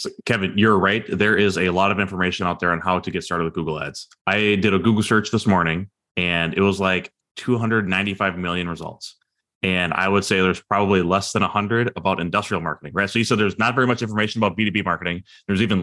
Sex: male